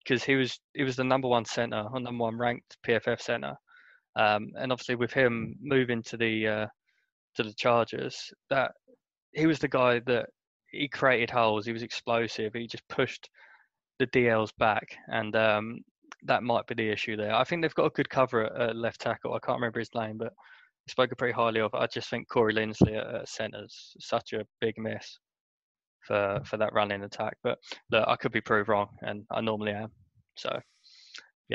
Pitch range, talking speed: 110-130 Hz, 200 wpm